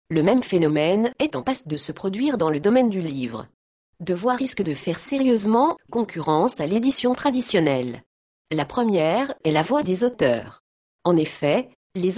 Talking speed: 165 wpm